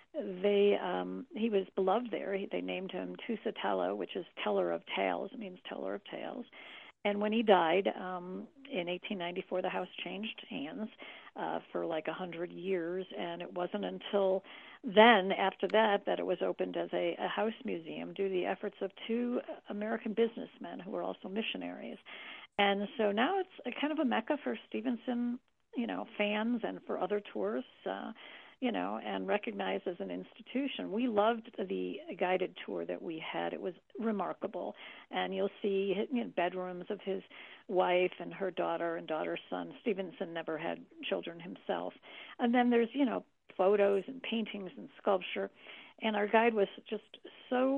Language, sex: English, female